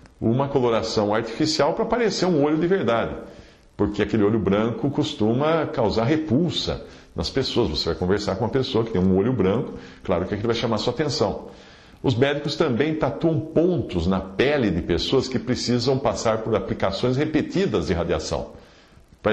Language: English